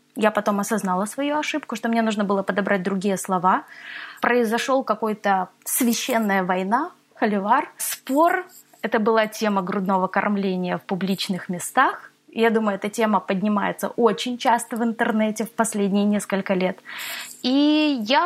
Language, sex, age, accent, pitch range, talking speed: Russian, female, 20-39, native, 205-255 Hz, 135 wpm